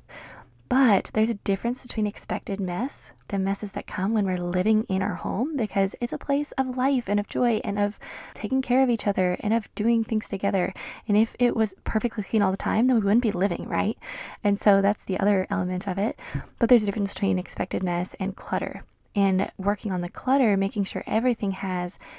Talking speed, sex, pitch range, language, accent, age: 215 wpm, female, 190-230 Hz, English, American, 20-39